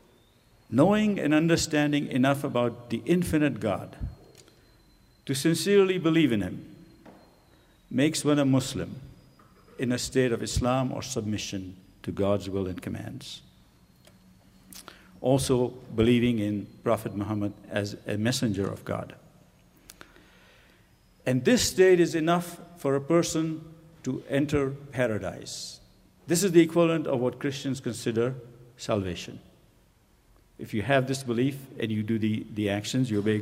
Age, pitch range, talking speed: 60-79, 110-145 Hz, 130 wpm